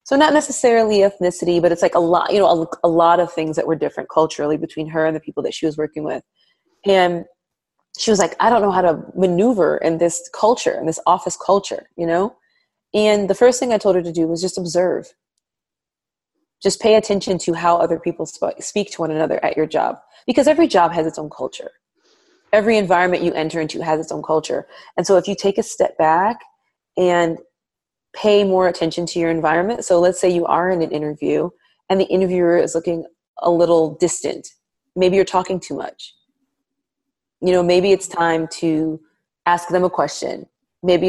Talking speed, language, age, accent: 200 wpm, English, 30-49, American